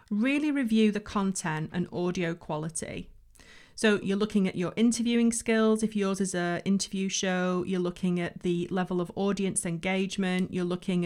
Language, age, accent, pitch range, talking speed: English, 30-49, British, 175-210 Hz, 165 wpm